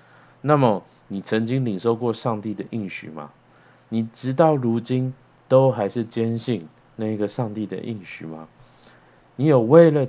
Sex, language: male, Chinese